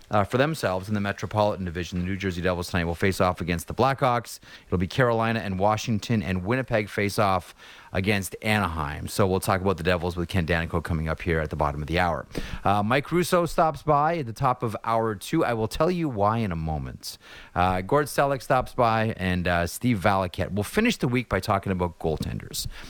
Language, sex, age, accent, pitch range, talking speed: English, male, 30-49, American, 85-120 Hz, 220 wpm